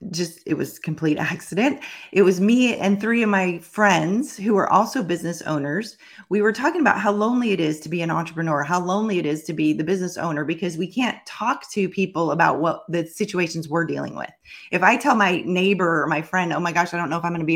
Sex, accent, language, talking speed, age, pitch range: female, American, English, 245 wpm, 30-49, 170-210 Hz